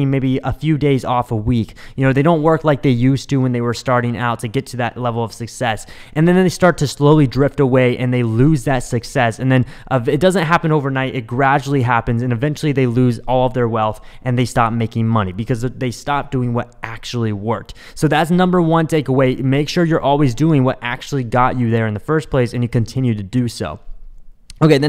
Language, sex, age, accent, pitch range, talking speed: English, male, 20-39, American, 120-155 Hz, 235 wpm